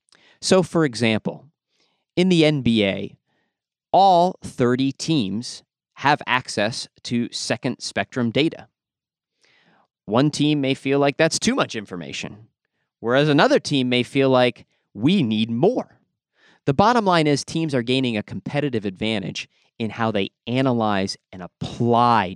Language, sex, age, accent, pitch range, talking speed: English, male, 30-49, American, 110-145 Hz, 130 wpm